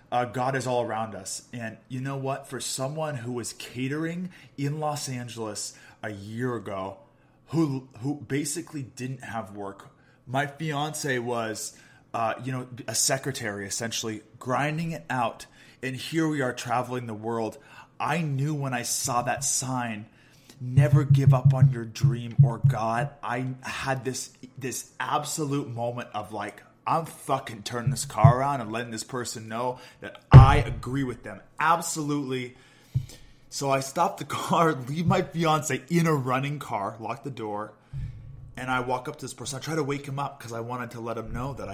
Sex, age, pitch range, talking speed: male, 20-39, 115-140 Hz, 175 wpm